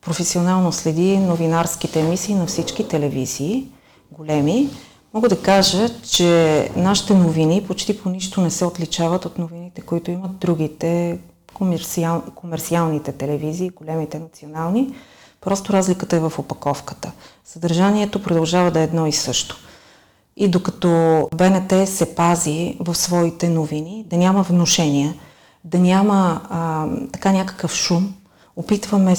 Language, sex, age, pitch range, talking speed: Bulgarian, female, 30-49, 165-195 Hz, 120 wpm